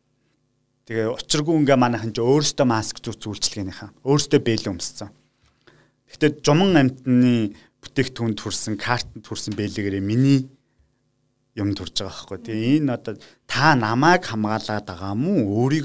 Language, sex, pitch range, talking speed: Russian, male, 105-135 Hz, 120 wpm